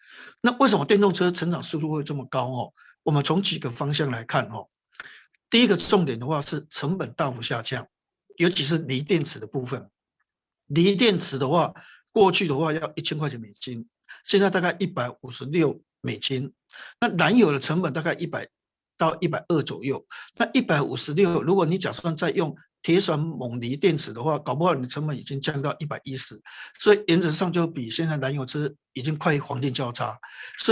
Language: Chinese